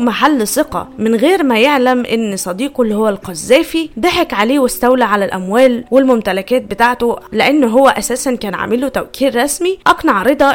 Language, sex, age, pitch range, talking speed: Arabic, female, 20-39, 215-290 Hz, 155 wpm